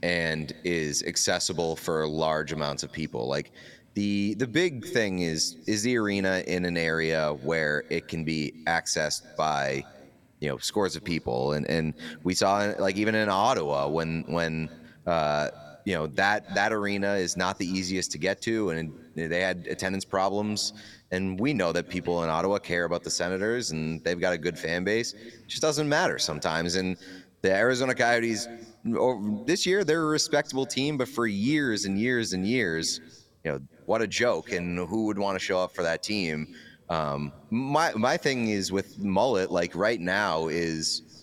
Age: 30-49